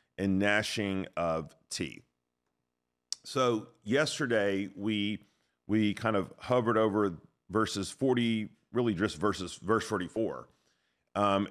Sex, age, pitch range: male, 40-59, 90-110 Hz